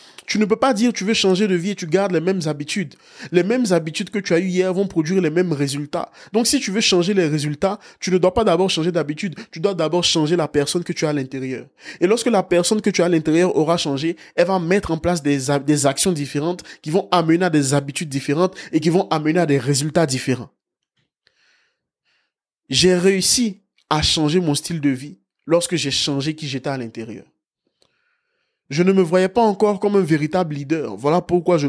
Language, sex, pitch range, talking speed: French, male, 145-195 Hz, 220 wpm